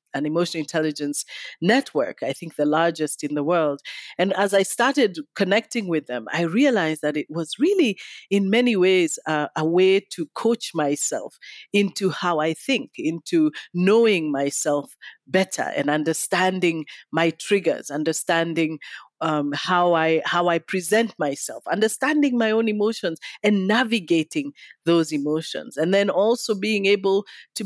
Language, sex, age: English, female, 40-59